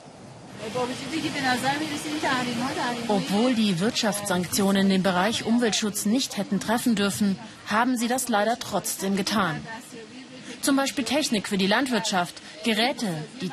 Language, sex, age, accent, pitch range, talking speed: German, female, 30-49, German, 195-245 Hz, 105 wpm